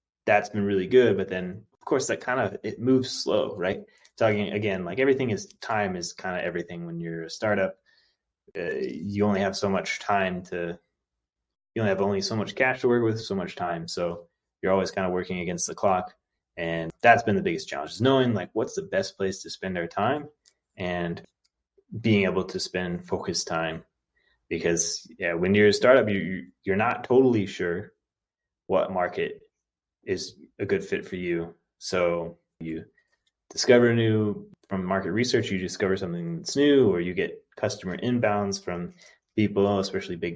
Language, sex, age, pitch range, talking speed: English, male, 20-39, 90-120 Hz, 180 wpm